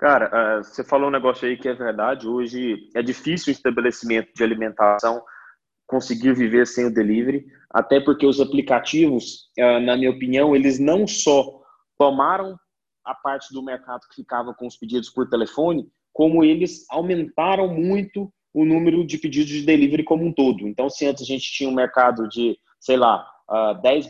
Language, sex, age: Portuguese, male, 20-39